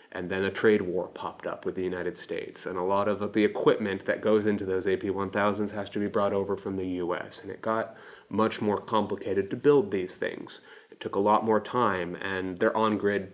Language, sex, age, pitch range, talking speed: English, male, 30-49, 95-110 Hz, 220 wpm